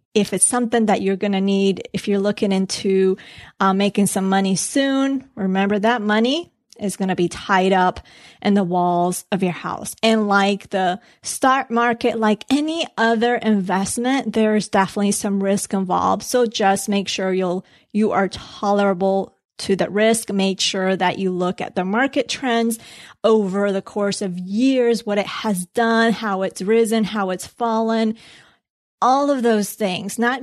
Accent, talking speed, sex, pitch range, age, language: American, 165 wpm, female, 195-230 Hz, 30-49, English